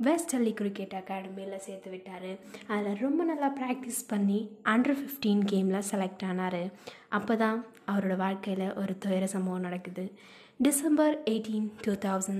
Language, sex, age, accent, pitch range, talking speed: Tamil, female, 20-39, native, 195-225 Hz, 120 wpm